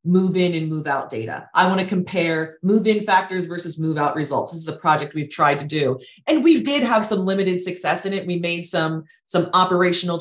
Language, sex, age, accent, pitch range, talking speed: English, female, 30-49, American, 160-200 Hz, 205 wpm